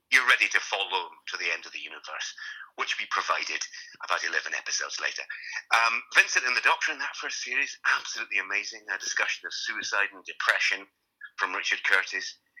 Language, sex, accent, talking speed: English, male, British, 175 wpm